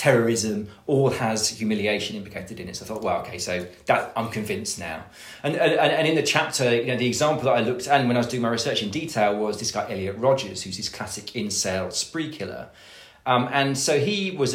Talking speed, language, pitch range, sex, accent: 230 wpm, English, 105-130 Hz, male, British